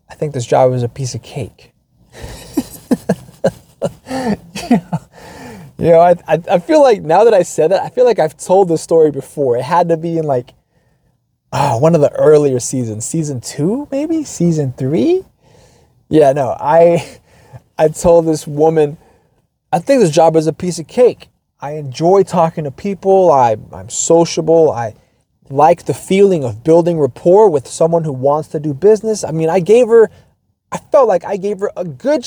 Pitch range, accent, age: 135-180 Hz, American, 20-39